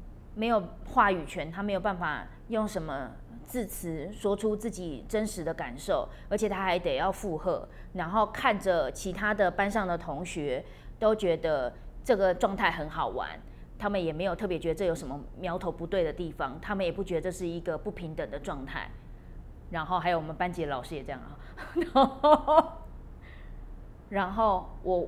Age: 20-39